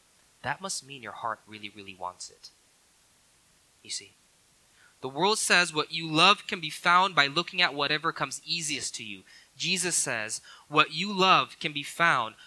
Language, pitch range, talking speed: English, 150-205 Hz, 175 wpm